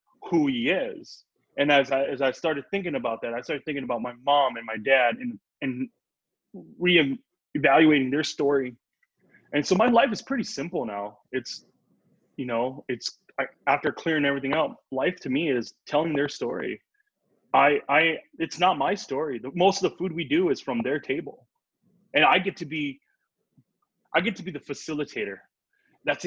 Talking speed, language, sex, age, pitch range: 180 wpm, English, male, 20-39, 130-175 Hz